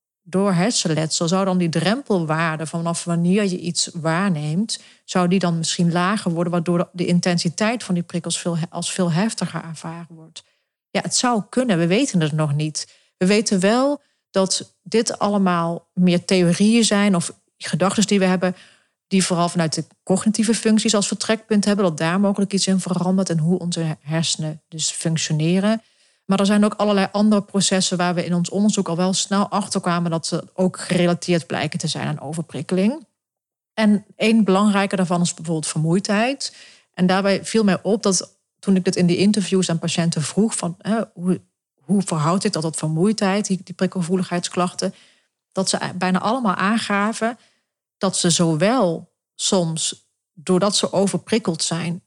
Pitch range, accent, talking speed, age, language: 170-200 Hz, Dutch, 165 wpm, 40-59, Dutch